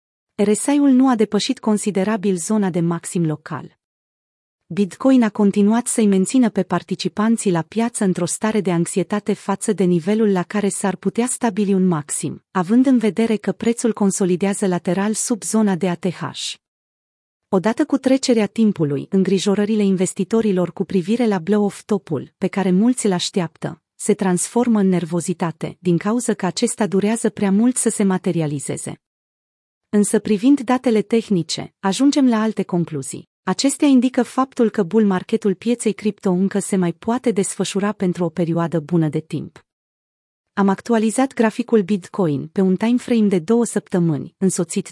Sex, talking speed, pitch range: female, 150 wpm, 185-225 Hz